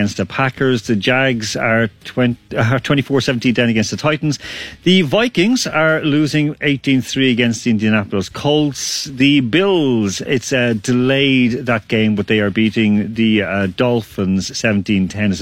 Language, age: English, 40-59